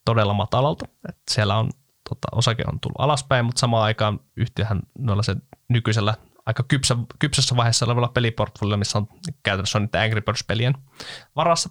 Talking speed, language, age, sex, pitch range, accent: 150 wpm, Finnish, 20-39, male, 105-130 Hz, native